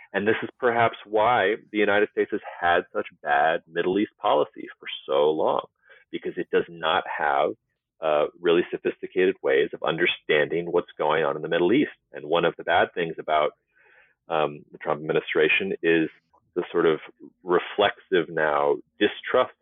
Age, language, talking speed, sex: 30-49, English, 165 wpm, male